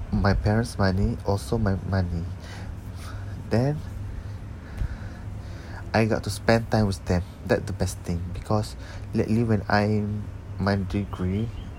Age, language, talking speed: 20-39, English, 120 wpm